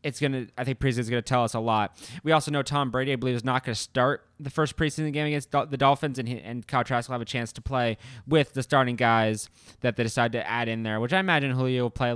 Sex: male